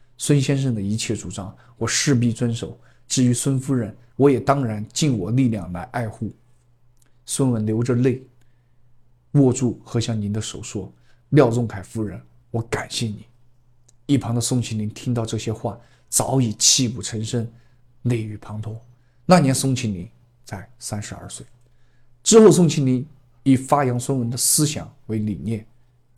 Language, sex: Chinese, male